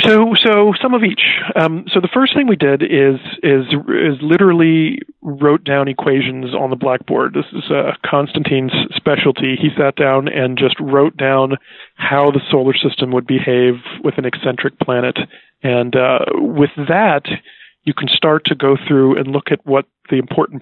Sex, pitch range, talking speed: male, 130-155 Hz, 175 wpm